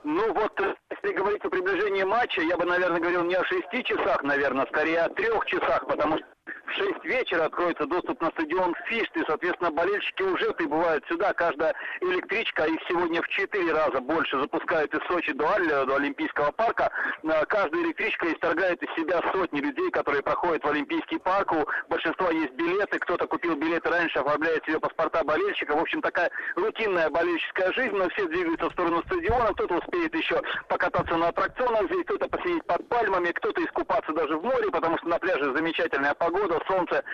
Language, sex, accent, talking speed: Russian, male, native, 180 wpm